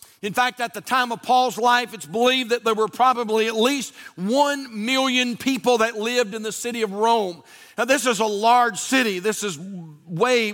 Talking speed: 200 wpm